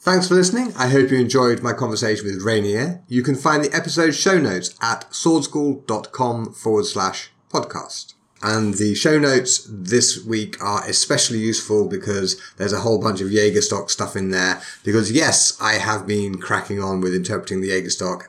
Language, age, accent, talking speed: English, 30-49, British, 175 wpm